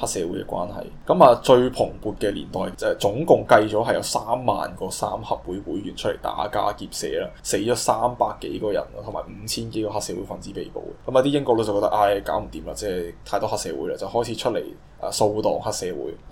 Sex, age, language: male, 10-29, Chinese